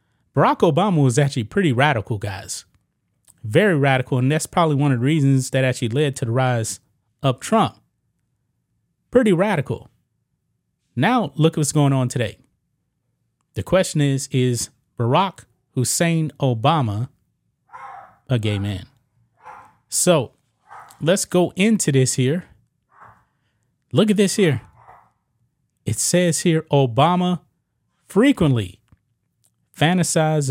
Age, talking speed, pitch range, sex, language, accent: 30-49, 115 wpm, 115-155 Hz, male, English, American